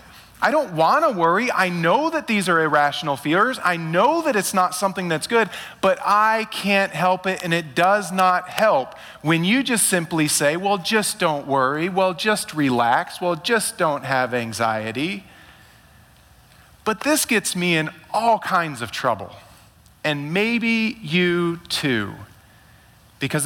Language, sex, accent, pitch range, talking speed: English, male, American, 130-195 Hz, 155 wpm